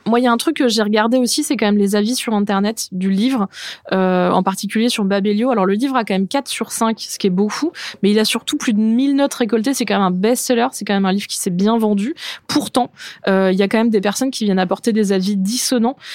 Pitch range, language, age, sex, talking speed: 200-240 Hz, French, 20-39, female, 280 wpm